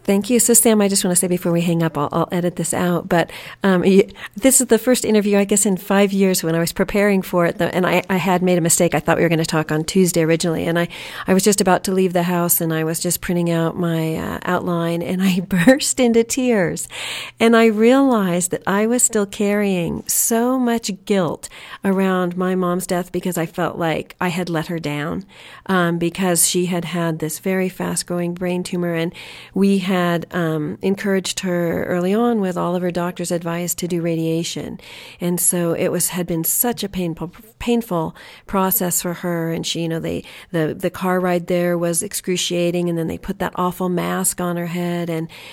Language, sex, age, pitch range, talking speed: English, female, 40-59, 170-200 Hz, 220 wpm